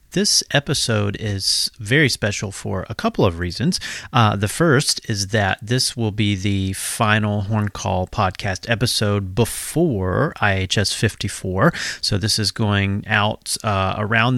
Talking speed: 140 wpm